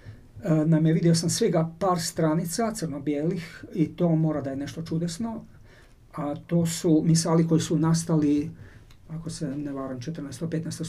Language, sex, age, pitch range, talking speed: Croatian, male, 50-69, 145-165 Hz, 145 wpm